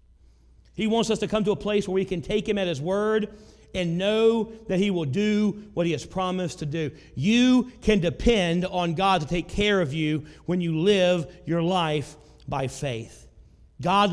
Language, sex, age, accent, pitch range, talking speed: English, male, 40-59, American, 150-200 Hz, 195 wpm